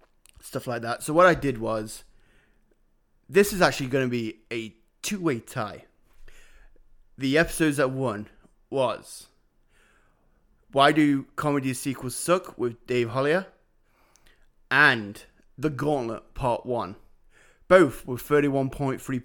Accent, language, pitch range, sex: British, English, 115-140 Hz, male